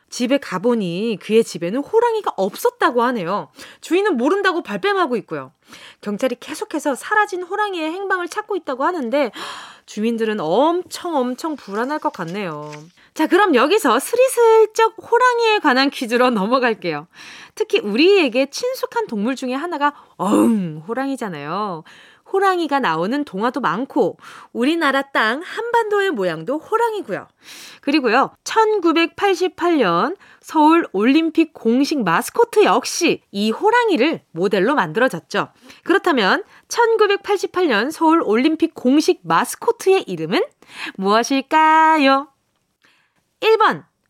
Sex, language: female, Korean